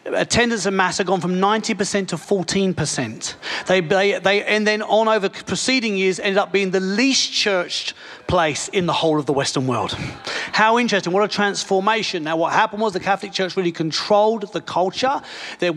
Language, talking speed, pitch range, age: English, 185 wpm, 175-220 Hz, 40-59